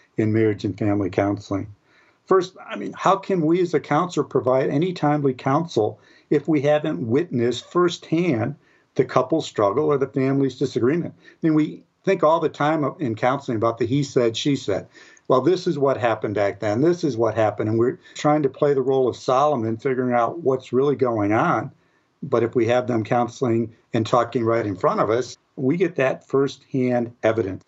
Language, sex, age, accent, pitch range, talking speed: English, male, 50-69, American, 115-150 Hz, 195 wpm